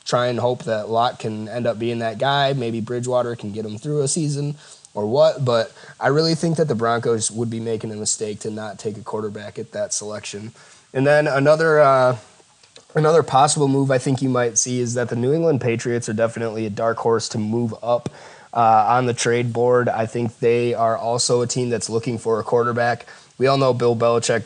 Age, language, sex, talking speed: 20-39, English, male, 220 wpm